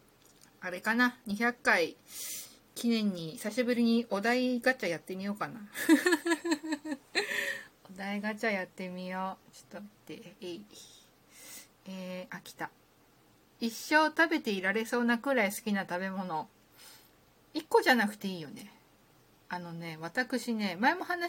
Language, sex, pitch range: Japanese, female, 180-260 Hz